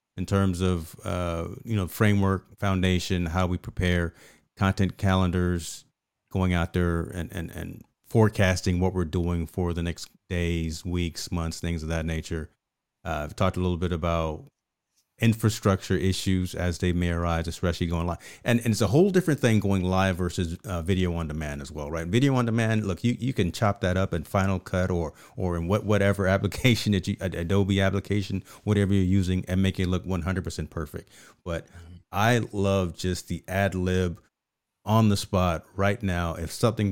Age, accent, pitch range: 40-59, American, 85-100 Hz